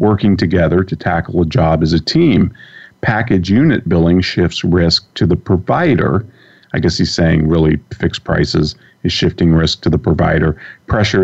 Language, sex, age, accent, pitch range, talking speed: English, male, 40-59, American, 80-100 Hz, 165 wpm